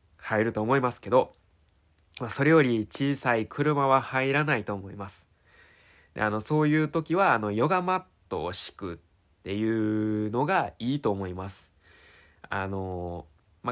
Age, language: 20-39, Japanese